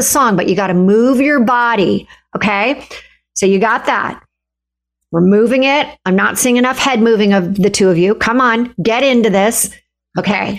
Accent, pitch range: American, 185-245 Hz